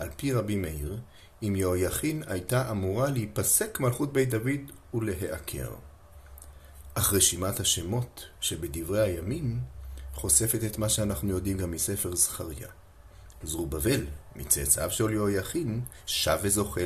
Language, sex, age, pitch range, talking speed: Hebrew, male, 40-59, 75-110 Hz, 115 wpm